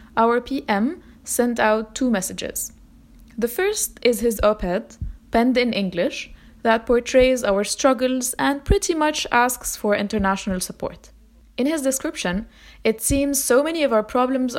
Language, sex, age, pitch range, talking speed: English, female, 20-39, 195-250 Hz, 145 wpm